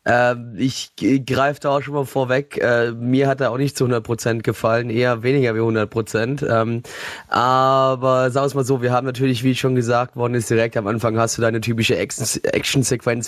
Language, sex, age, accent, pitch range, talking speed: German, male, 20-39, German, 125-145 Hz, 185 wpm